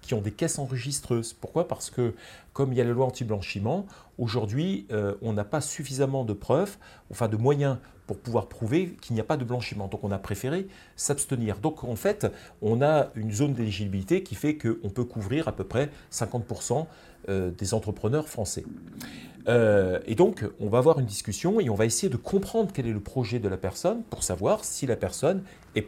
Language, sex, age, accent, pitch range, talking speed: French, male, 40-59, French, 105-145 Hz, 205 wpm